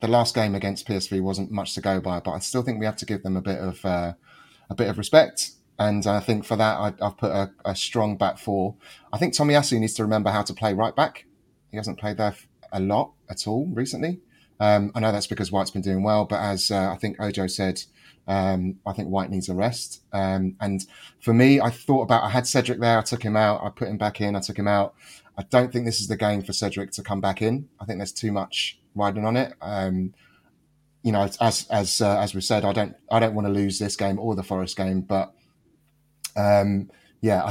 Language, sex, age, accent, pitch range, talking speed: English, male, 30-49, British, 95-115 Hz, 245 wpm